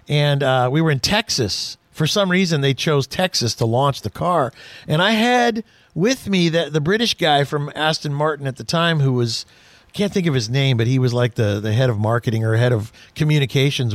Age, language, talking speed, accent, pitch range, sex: 40-59, English, 225 wpm, American, 135-230 Hz, male